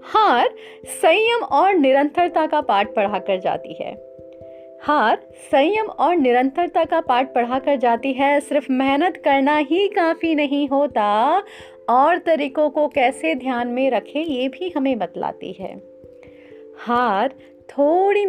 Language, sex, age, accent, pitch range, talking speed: Hindi, female, 30-49, native, 225-300 Hz, 130 wpm